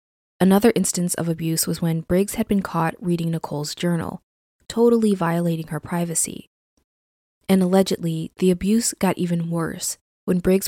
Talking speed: 145 wpm